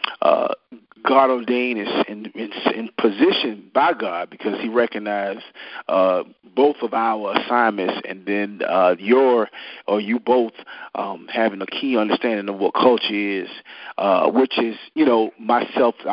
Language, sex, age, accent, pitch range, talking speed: English, male, 40-59, American, 105-125 Hz, 140 wpm